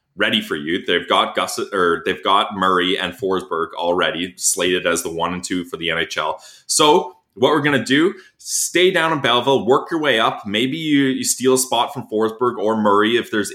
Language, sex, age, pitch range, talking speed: English, male, 20-39, 105-140 Hz, 215 wpm